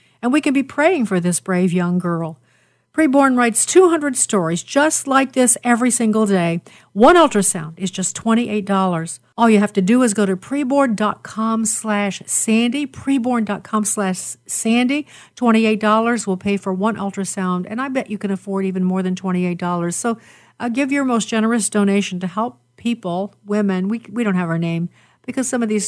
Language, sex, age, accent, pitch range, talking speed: English, female, 50-69, American, 190-245 Hz, 175 wpm